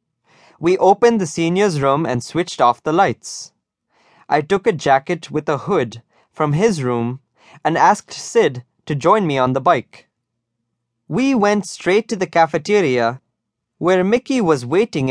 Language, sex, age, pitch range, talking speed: English, male, 20-39, 125-190 Hz, 155 wpm